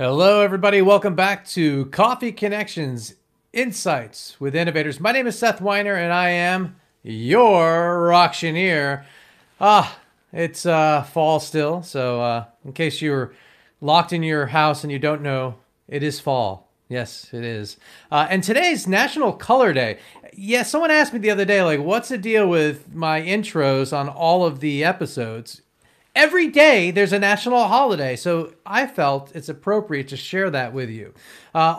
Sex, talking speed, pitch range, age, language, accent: male, 160 wpm, 140-190 Hz, 40-59, English, American